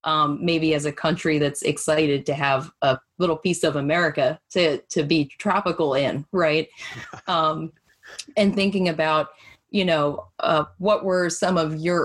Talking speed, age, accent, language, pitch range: 160 wpm, 20-39, American, English, 150-175 Hz